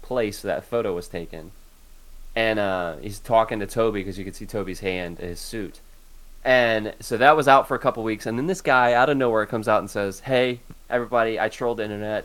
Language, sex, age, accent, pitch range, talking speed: English, male, 20-39, American, 90-115 Hz, 220 wpm